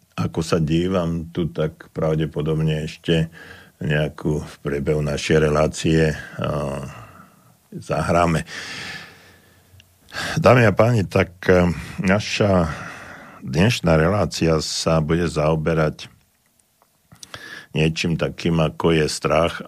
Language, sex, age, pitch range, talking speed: Slovak, male, 50-69, 75-85 Hz, 80 wpm